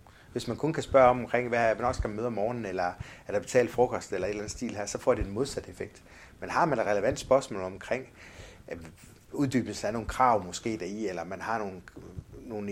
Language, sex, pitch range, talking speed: Danish, male, 95-120 Hz, 230 wpm